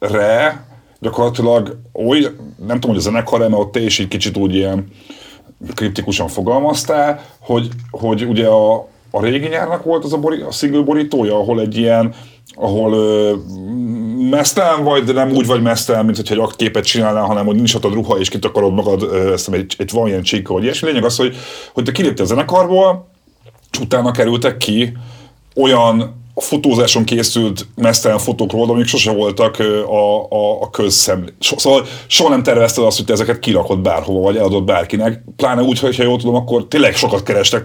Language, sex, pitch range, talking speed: Hungarian, male, 105-125 Hz, 175 wpm